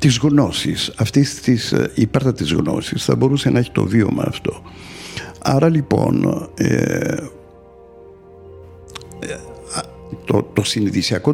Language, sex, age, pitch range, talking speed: Greek, male, 60-79, 110-150 Hz, 105 wpm